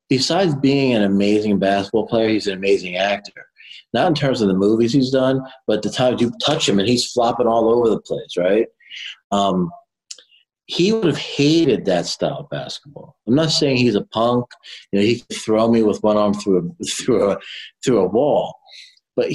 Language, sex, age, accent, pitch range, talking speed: English, male, 40-59, American, 95-125 Hz, 200 wpm